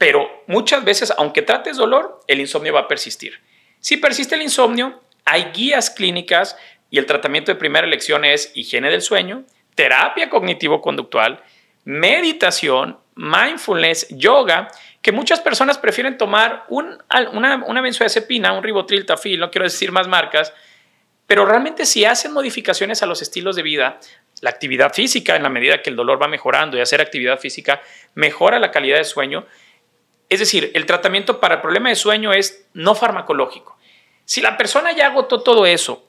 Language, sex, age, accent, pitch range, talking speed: Spanish, male, 40-59, Mexican, 185-275 Hz, 165 wpm